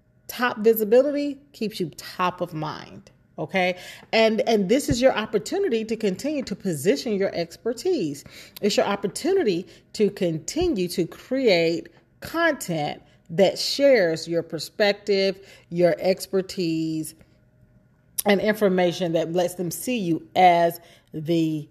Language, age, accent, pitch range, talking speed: English, 40-59, American, 175-230 Hz, 120 wpm